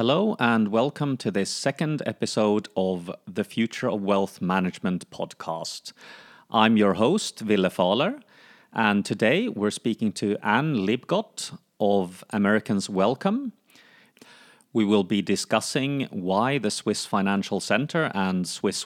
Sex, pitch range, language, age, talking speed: male, 95-130 Hz, English, 30-49, 125 wpm